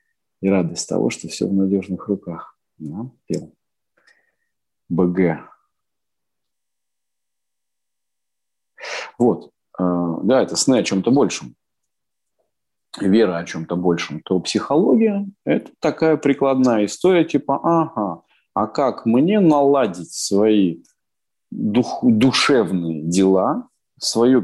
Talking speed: 95 wpm